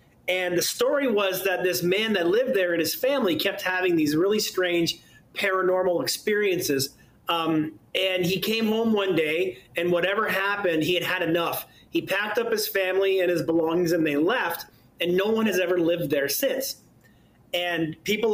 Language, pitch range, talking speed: English, 170-225 Hz, 180 wpm